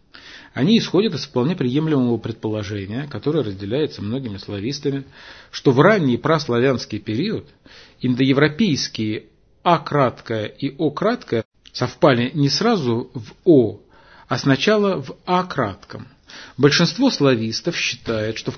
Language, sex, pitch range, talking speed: Russian, male, 115-155 Hz, 105 wpm